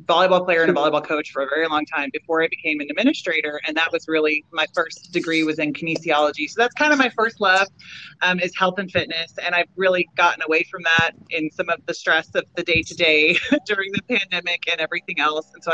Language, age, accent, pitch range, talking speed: English, 30-49, American, 155-190 Hz, 240 wpm